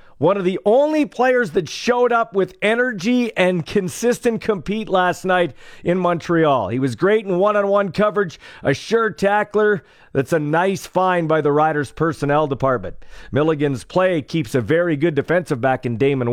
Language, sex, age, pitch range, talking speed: English, male, 40-59, 155-240 Hz, 165 wpm